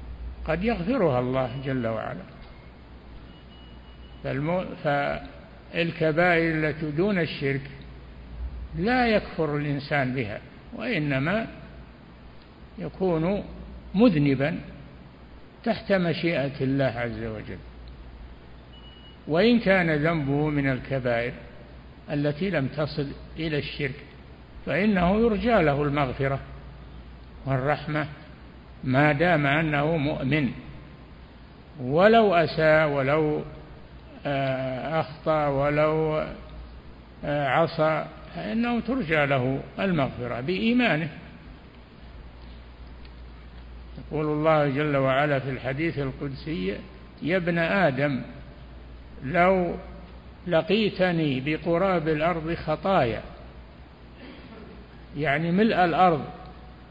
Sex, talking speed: male, 75 wpm